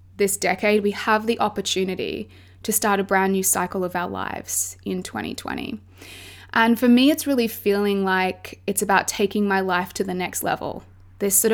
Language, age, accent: English, 20-39, Australian